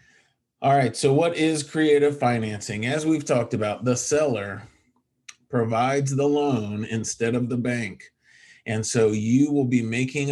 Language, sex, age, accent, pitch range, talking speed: English, male, 40-59, American, 110-135 Hz, 150 wpm